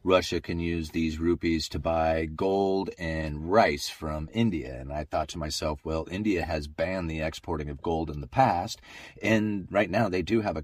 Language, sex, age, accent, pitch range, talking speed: English, male, 30-49, American, 75-90 Hz, 195 wpm